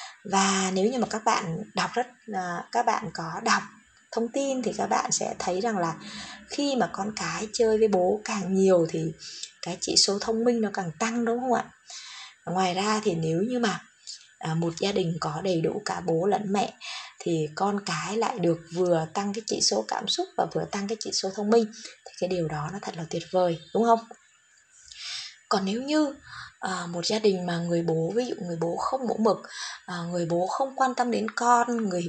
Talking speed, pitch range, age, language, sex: 210 wpm, 180-245 Hz, 20-39, Vietnamese, female